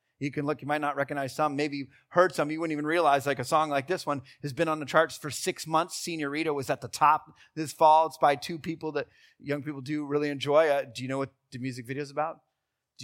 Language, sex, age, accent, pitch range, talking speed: English, male, 30-49, American, 130-155 Hz, 260 wpm